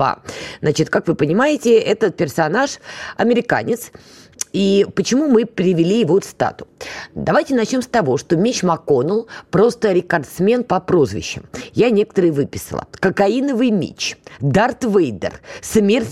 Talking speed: 125 wpm